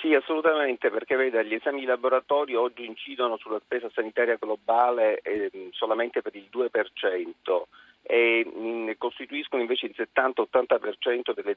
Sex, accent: male, native